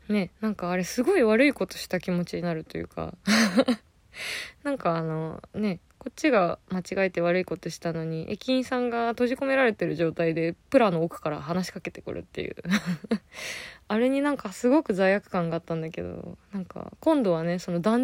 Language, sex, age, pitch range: Japanese, female, 20-39, 175-240 Hz